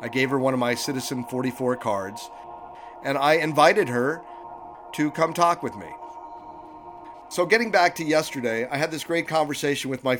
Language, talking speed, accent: English, 175 wpm, American